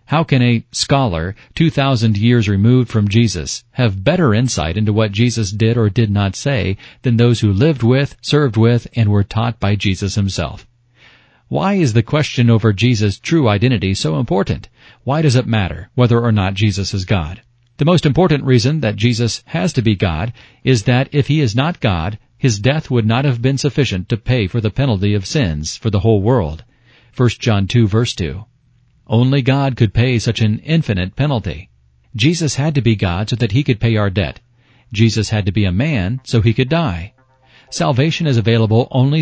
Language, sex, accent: English, male, American